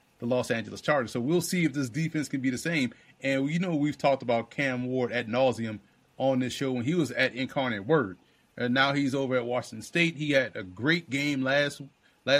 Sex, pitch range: male, 125-150 Hz